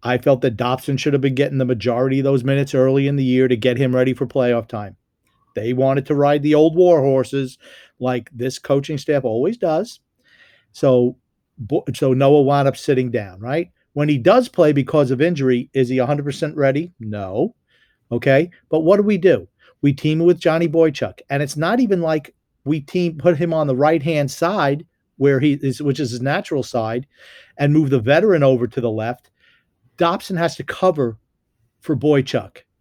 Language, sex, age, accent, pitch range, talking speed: English, male, 50-69, American, 130-160 Hz, 195 wpm